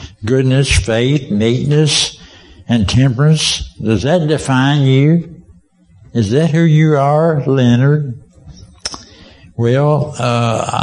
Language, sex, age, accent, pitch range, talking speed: English, male, 60-79, American, 105-140 Hz, 95 wpm